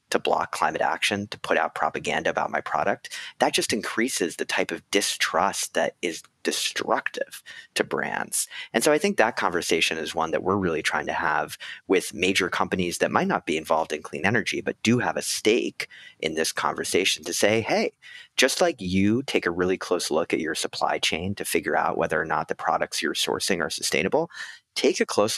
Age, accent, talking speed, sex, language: 30-49, American, 205 wpm, male, English